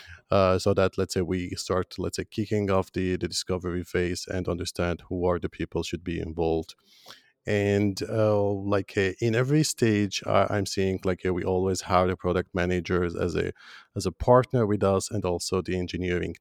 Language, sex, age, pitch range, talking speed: English, male, 40-59, 90-100 Hz, 195 wpm